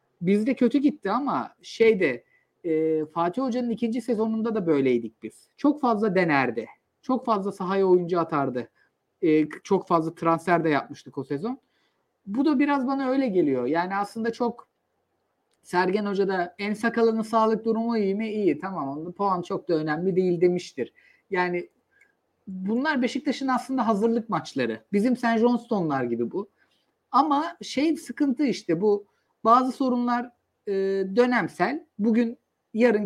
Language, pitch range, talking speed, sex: Turkish, 170-235 Hz, 140 wpm, male